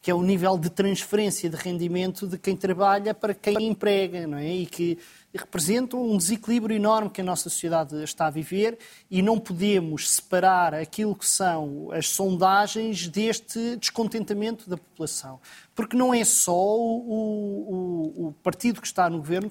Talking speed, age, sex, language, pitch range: 165 wpm, 20-39, male, Portuguese, 175-220 Hz